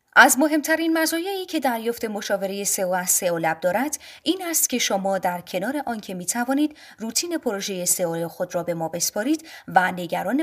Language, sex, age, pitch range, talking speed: Persian, female, 30-49, 185-290 Hz, 160 wpm